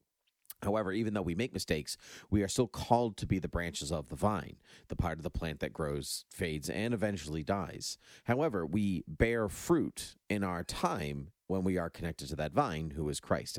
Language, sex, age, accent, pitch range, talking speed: English, male, 40-59, American, 80-105 Hz, 200 wpm